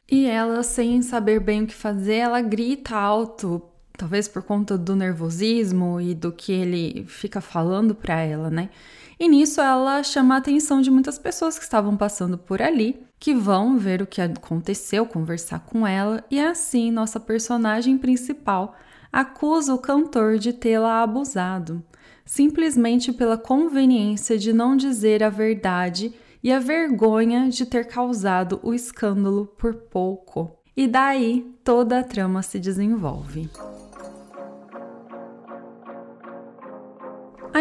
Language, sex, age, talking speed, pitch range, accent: Portuguese, female, 10-29, 135 wpm, 195-255 Hz, Brazilian